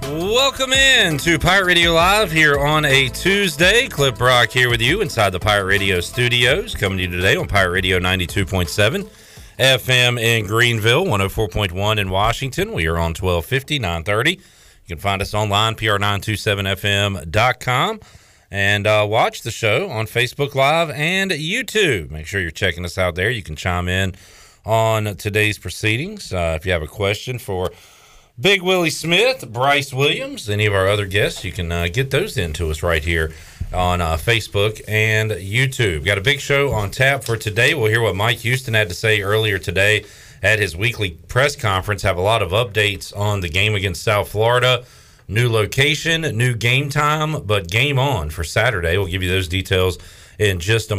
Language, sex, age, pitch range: English, male, 40-59, 95-130 Hz